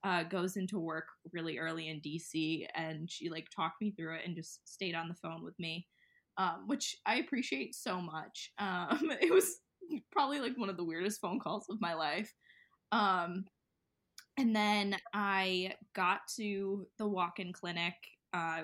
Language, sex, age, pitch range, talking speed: English, female, 20-39, 165-215 Hz, 175 wpm